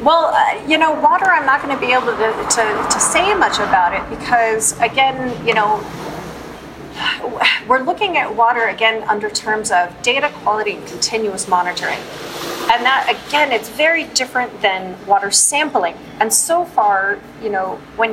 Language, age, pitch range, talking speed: English, 30-49, 195-240 Hz, 165 wpm